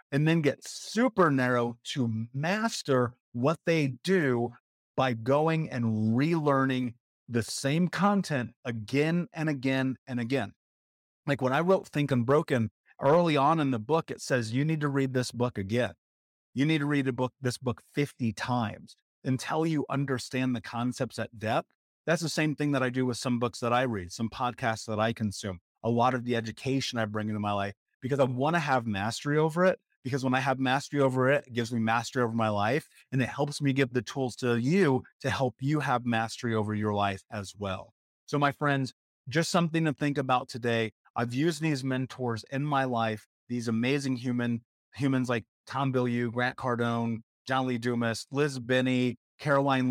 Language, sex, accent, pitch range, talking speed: English, male, American, 115-140 Hz, 190 wpm